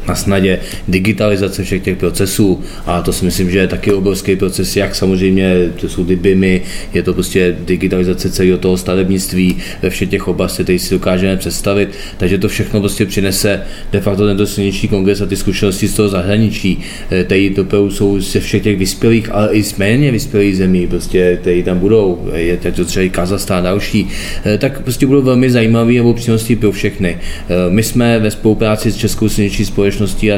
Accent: native